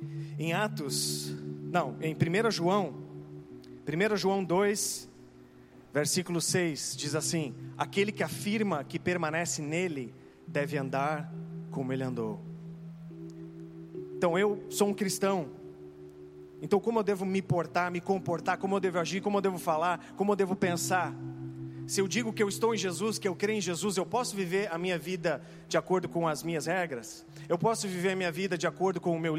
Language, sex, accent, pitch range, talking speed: Portuguese, male, Brazilian, 135-180 Hz, 175 wpm